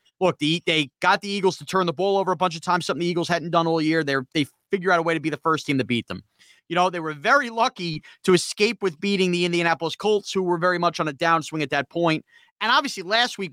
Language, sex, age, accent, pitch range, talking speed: English, male, 30-49, American, 165-220 Hz, 280 wpm